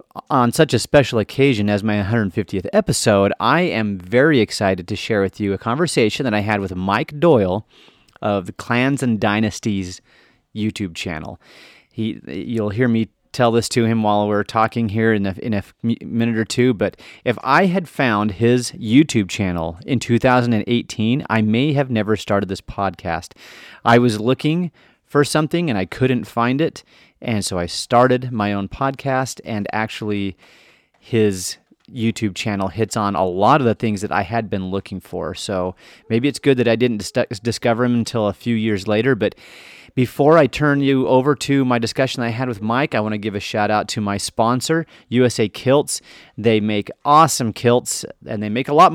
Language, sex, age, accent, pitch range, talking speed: English, male, 30-49, American, 100-125 Hz, 185 wpm